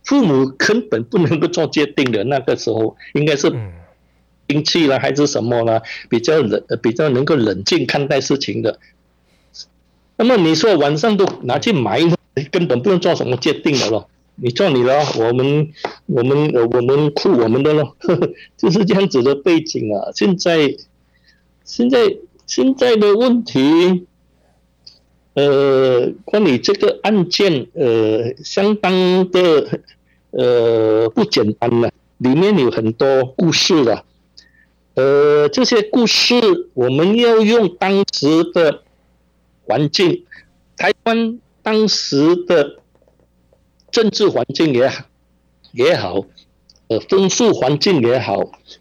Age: 60-79